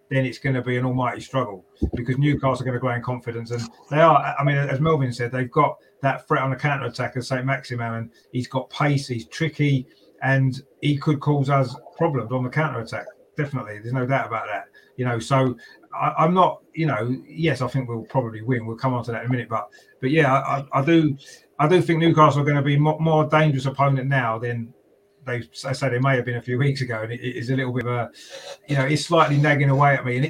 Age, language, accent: 30-49, English, British